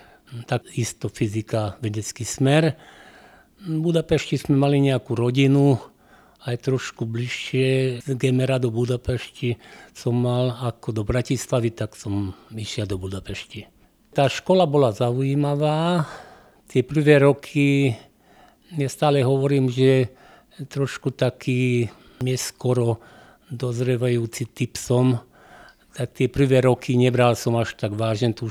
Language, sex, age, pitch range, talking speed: Slovak, male, 50-69, 110-130 Hz, 115 wpm